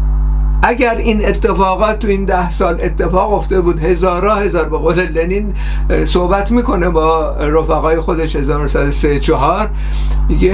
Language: Persian